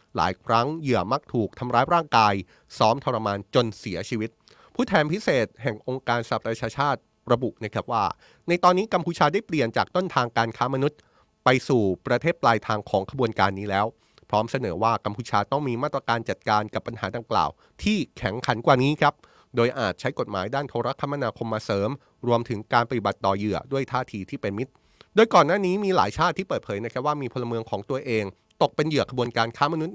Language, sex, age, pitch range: Thai, male, 30-49, 105-140 Hz